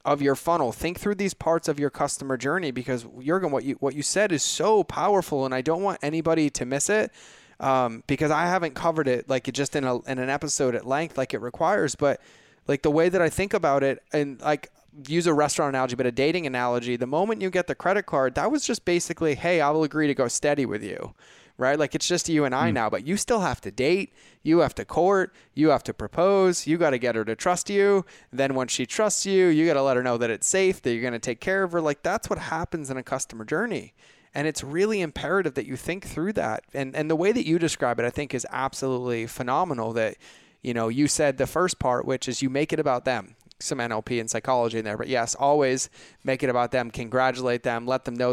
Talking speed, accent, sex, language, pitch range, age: 250 wpm, American, male, English, 125-160 Hz, 20-39